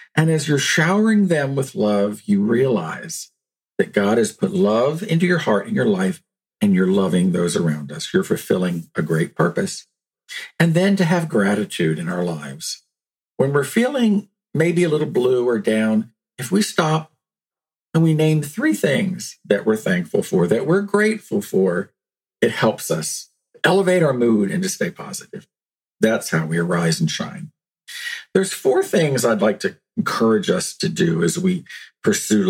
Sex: male